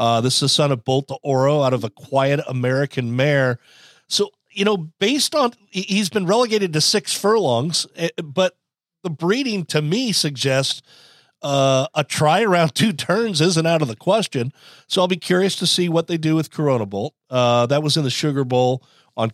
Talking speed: 195 wpm